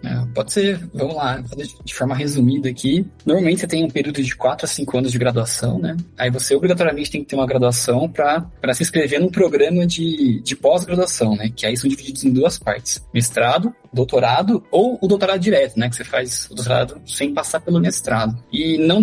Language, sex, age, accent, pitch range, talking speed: Portuguese, male, 20-39, Brazilian, 125-170 Hz, 200 wpm